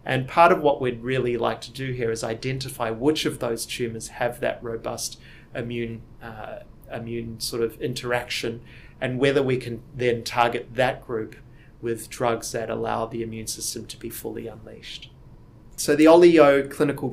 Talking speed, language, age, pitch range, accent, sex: 170 wpm, English, 30-49, 115-135 Hz, Australian, male